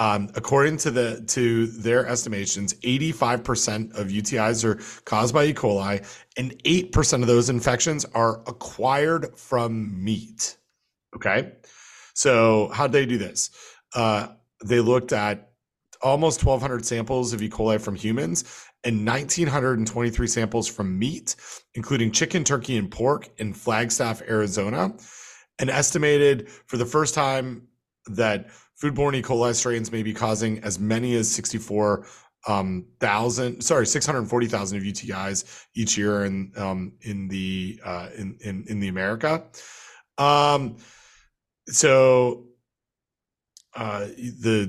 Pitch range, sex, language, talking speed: 105-125 Hz, male, English, 125 wpm